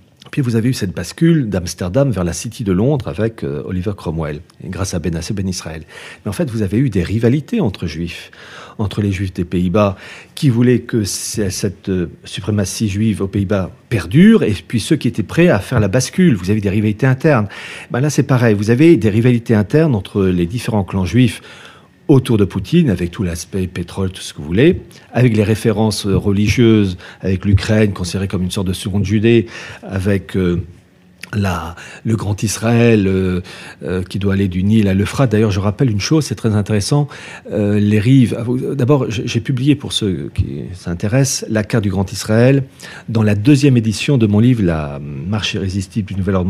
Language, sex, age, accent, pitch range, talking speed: French, male, 40-59, French, 95-125 Hz, 195 wpm